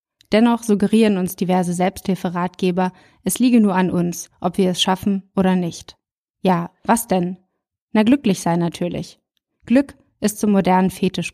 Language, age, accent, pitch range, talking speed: German, 20-39, German, 180-215 Hz, 150 wpm